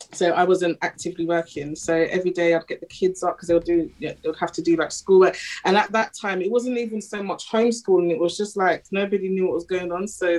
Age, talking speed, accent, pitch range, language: 20-39, 250 wpm, British, 170-195 Hz, English